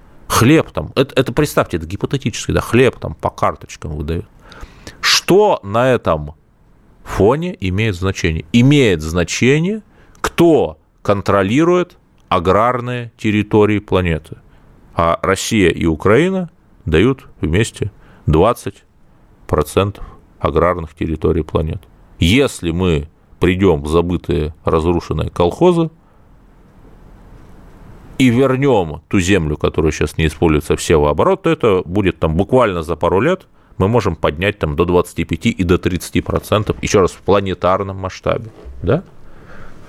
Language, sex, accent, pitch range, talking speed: Russian, male, native, 85-110 Hz, 115 wpm